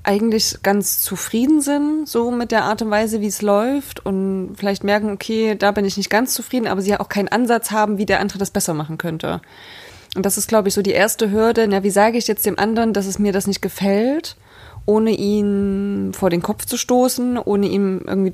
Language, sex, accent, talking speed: German, female, German, 225 wpm